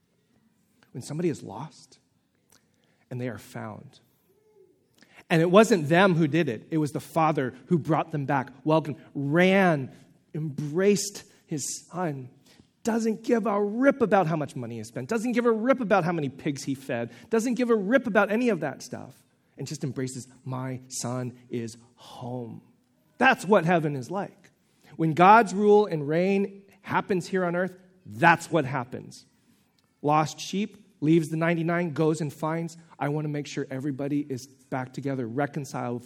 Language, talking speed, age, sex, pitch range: English, 165 wpm, 40-59, male, 130-185 Hz